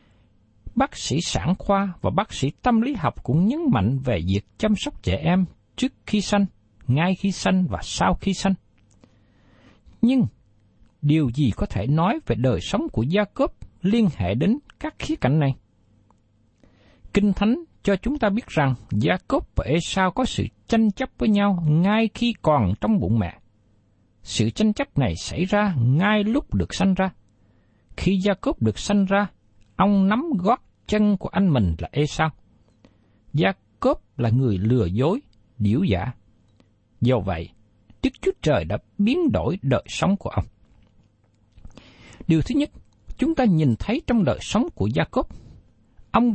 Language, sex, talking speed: Vietnamese, male, 170 wpm